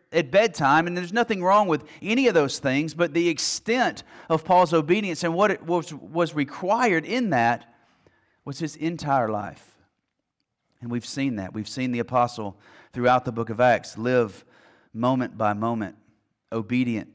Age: 30-49